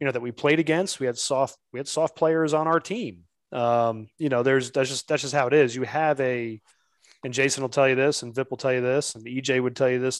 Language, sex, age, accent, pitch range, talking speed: English, male, 30-49, American, 120-140 Hz, 280 wpm